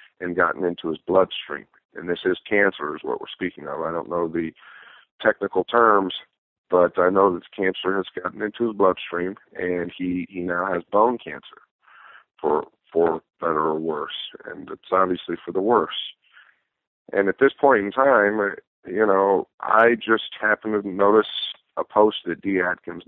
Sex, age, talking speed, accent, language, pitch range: male, 50-69, 170 wpm, American, English, 85-100 Hz